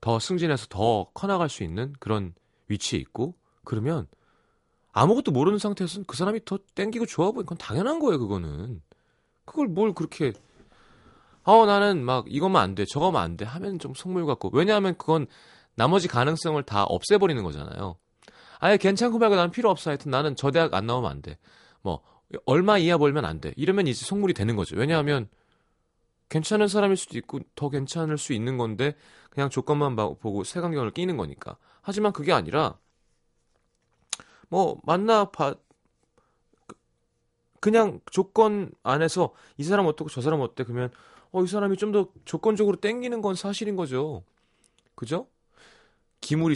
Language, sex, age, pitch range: Korean, male, 30-49, 125-195 Hz